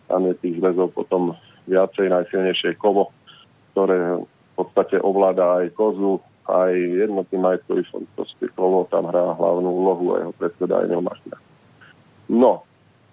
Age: 40-59